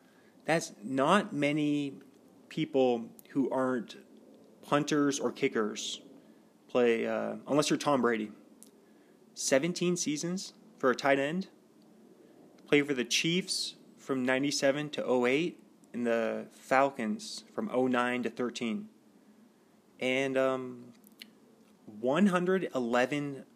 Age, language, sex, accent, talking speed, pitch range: 30-49, English, male, American, 100 wpm, 125-210 Hz